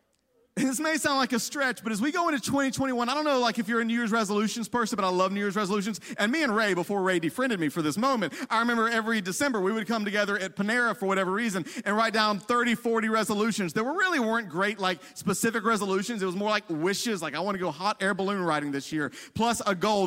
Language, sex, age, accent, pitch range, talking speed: English, male, 30-49, American, 205-265 Hz, 255 wpm